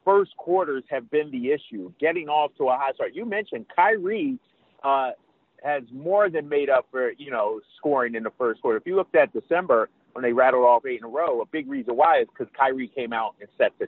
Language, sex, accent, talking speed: English, male, American, 235 wpm